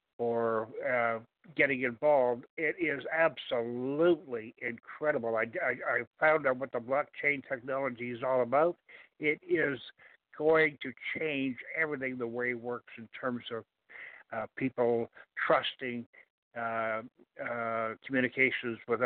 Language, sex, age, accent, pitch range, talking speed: English, male, 60-79, American, 120-145 Hz, 125 wpm